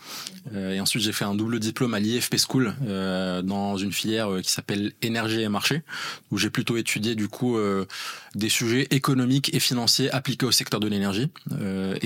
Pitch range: 100-125 Hz